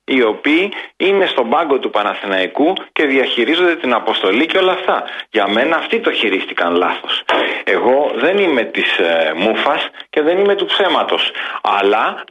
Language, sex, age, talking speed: Greek, male, 40-59, 150 wpm